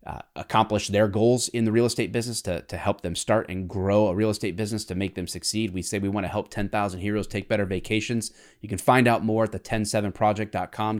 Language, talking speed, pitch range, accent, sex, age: English, 235 wpm, 95-115 Hz, American, male, 30-49